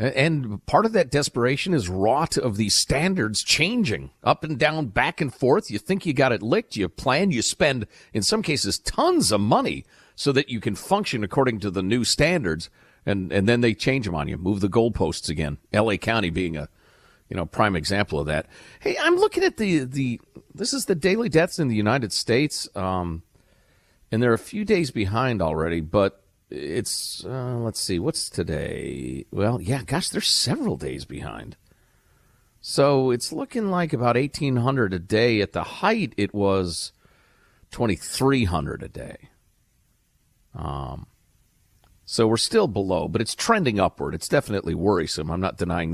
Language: English